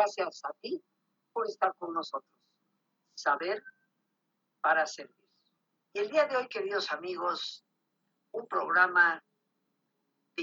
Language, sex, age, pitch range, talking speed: Spanish, female, 50-69, 170-215 Hz, 115 wpm